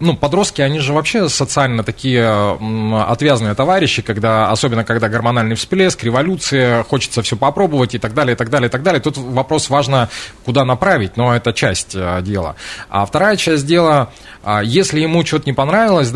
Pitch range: 115-150 Hz